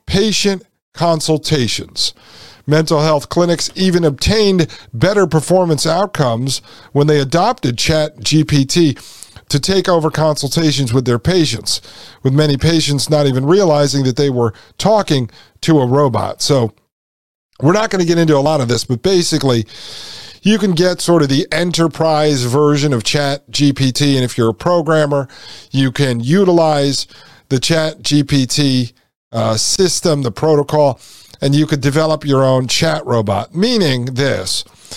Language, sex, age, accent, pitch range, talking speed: English, male, 40-59, American, 130-165 Hz, 140 wpm